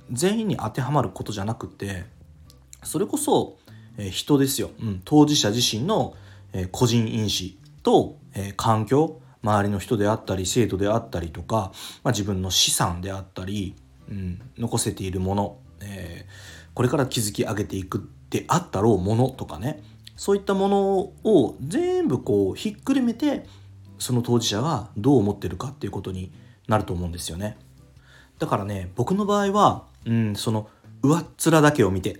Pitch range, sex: 95-130 Hz, male